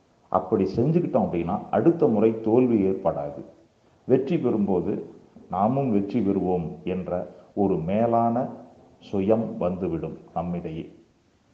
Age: 40-59